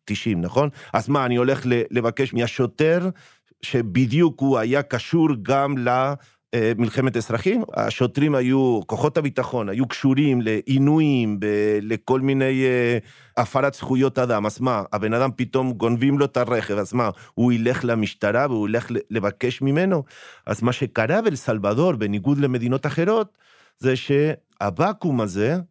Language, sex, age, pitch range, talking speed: Hebrew, male, 40-59, 110-140 Hz, 130 wpm